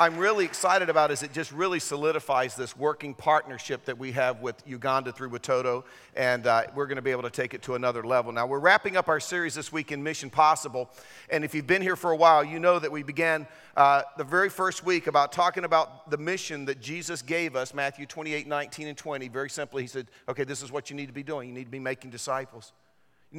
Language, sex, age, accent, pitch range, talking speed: English, male, 50-69, American, 140-170 Hz, 240 wpm